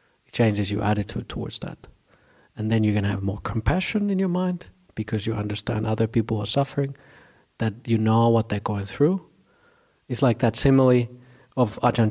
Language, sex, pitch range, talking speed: English, male, 105-125 Hz, 175 wpm